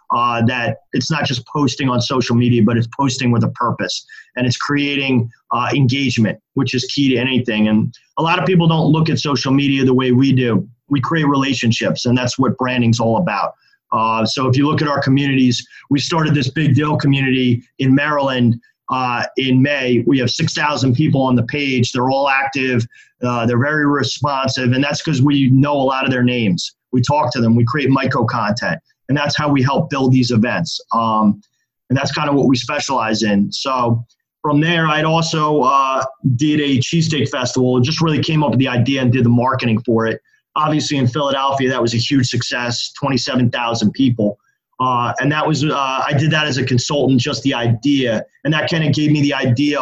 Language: English